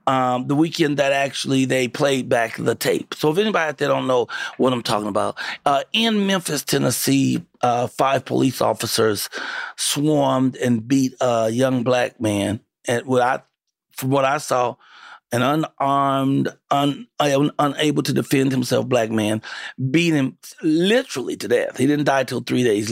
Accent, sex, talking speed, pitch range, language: American, male, 170 wpm, 130-155 Hz, English